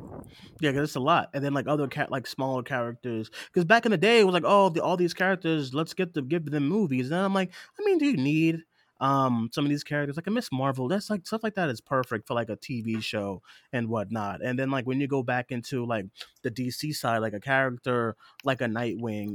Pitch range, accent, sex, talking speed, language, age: 115-155 Hz, American, male, 255 wpm, English, 20-39